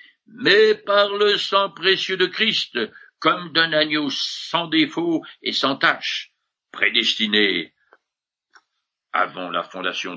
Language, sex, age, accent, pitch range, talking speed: French, male, 60-79, French, 140-220 Hz, 110 wpm